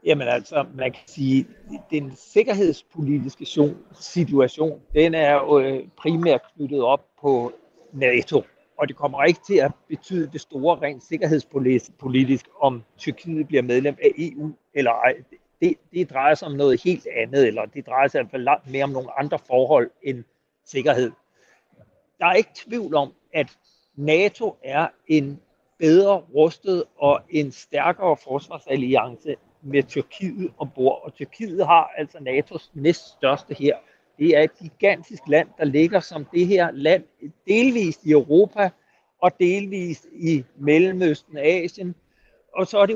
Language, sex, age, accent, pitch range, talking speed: Danish, male, 60-79, native, 140-175 Hz, 150 wpm